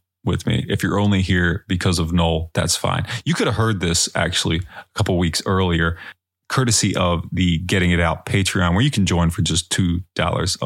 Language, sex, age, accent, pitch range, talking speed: English, male, 30-49, American, 85-100 Hz, 195 wpm